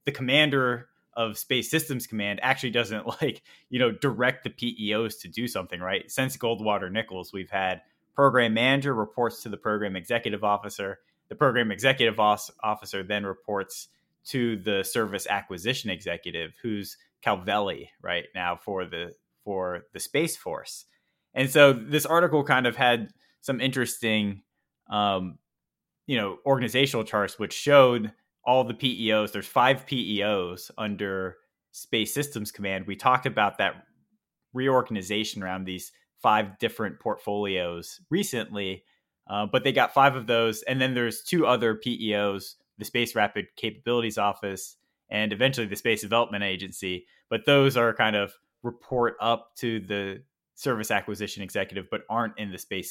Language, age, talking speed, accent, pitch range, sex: English, 20-39, 145 wpm, American, 100-125 Hz, male